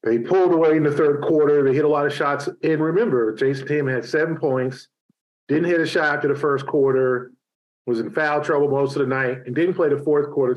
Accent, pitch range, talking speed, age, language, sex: American, 135-170 Hz, 240 wpm, 40-59, English, male